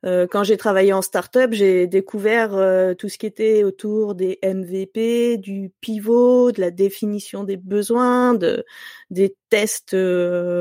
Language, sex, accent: French, female, French